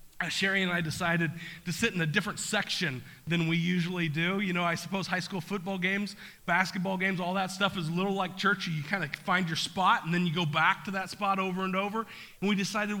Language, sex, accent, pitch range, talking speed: English, male, American, 180-230 Hz, 240 wpm